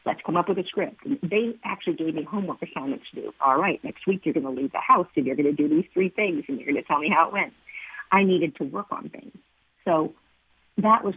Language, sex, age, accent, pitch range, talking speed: English, female, 50-69, American, 155-200 Hz, 270 wpm